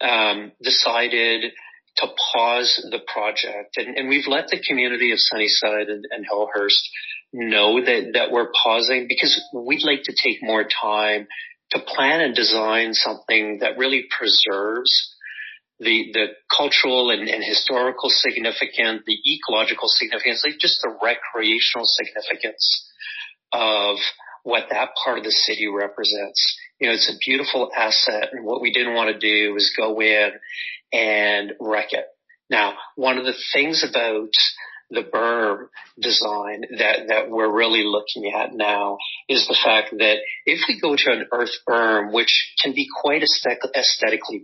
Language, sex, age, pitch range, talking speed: English, male, 40-59, 105-135 Hz, 150 wpm